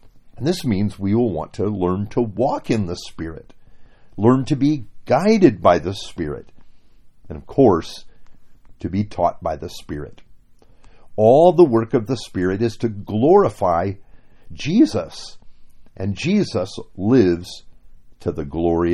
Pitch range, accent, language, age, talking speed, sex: 90-125 Hz, American, English, 50-69, 140 wpm, male